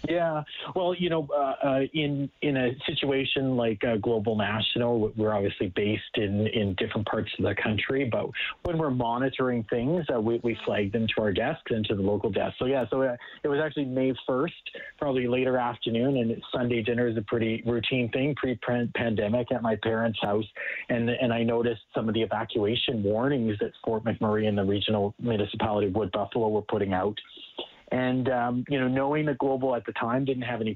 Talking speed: 205 wpm